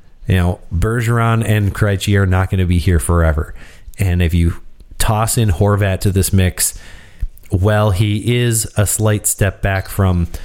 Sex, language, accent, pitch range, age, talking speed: male, English, American, 90-110 Hz, 30-49, 165 wpm